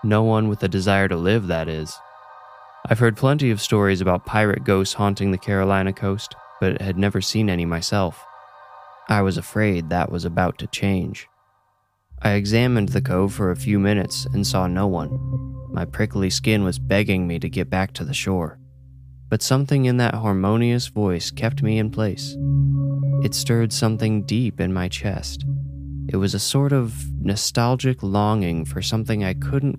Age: 20-39